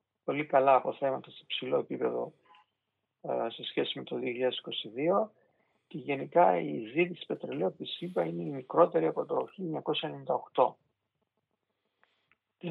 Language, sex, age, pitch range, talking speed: Greek, male, 50-69, 135-170 Hz, 120 wpm